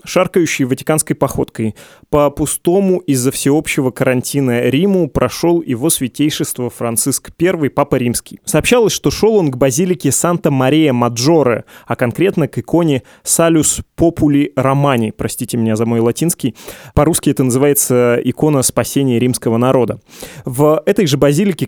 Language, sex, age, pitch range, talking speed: Russian, male, 20-39, 125-155 Hz, 135 wpm